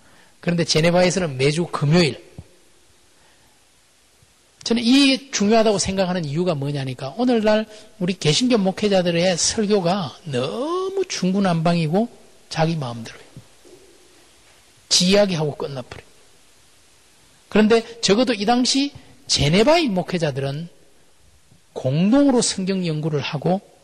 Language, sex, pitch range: Korean, male, 155-240 Hz